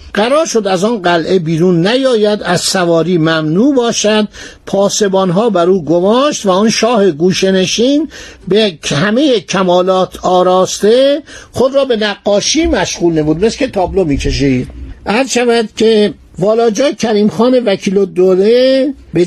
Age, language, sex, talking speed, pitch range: 60-79, Persian, male, 130 wpm, 170-225 Hz